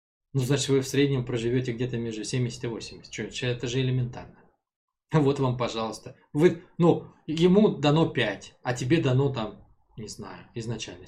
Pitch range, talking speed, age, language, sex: 120-165 Hz, 160 wpm, 20-39, Russian, male